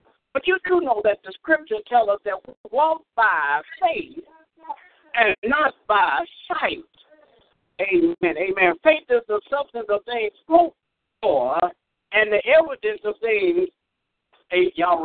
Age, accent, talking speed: 60-79, American, 130 wpm